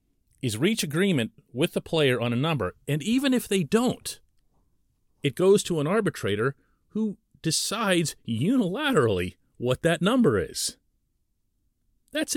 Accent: American